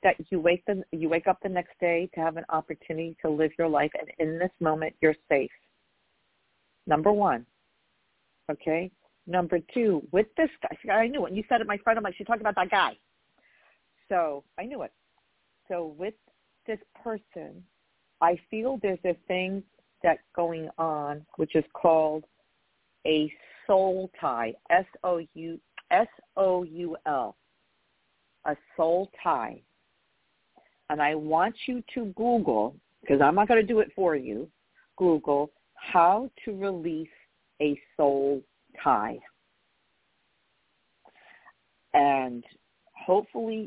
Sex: female